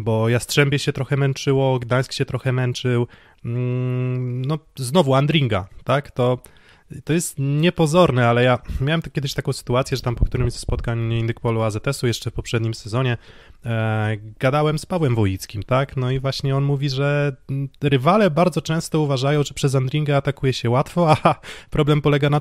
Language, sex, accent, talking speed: Polish, male, native, 160 wpm